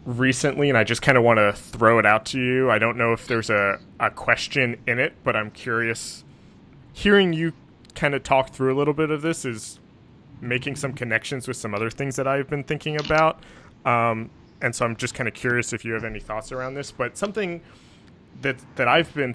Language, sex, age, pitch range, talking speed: English, male, 20-39, 110-130 Hz, 220 wpm